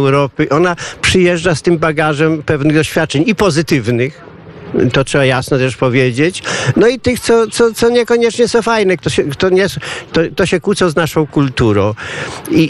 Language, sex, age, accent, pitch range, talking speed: Polish, male, 50-69, native, 130-170 Hz, 170 wpm